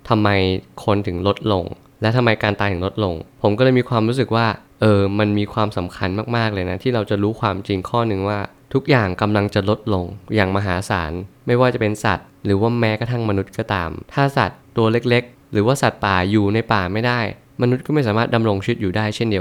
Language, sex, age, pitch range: Thai, male, 20-39, 100-125 Hz